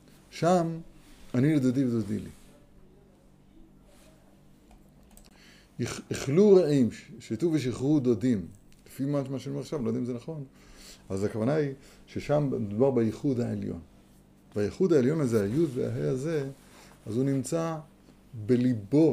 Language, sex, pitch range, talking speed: Hebrew, male, 110-150 Hz, 115 wpm